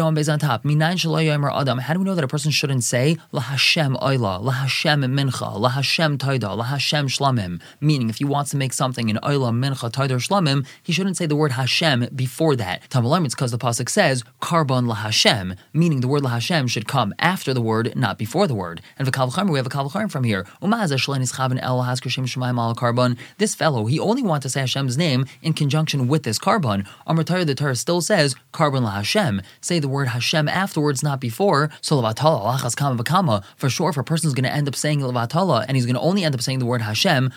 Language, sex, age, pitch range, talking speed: English, male, 20-39, 125-160 Hz, 200 wpm